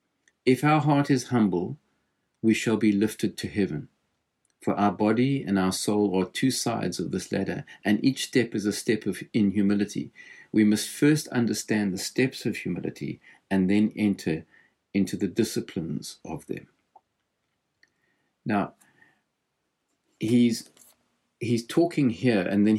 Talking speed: 145 wpm